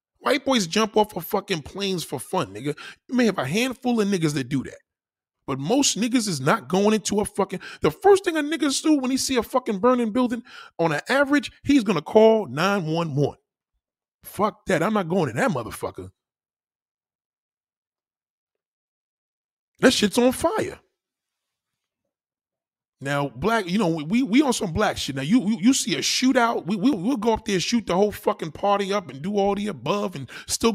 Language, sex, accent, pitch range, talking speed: English, male, American, 145-230 Hz, 190 wpm